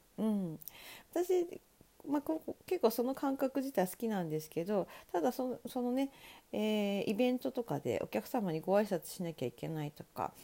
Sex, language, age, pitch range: female, Japanese, 40-59, 180-265 Hz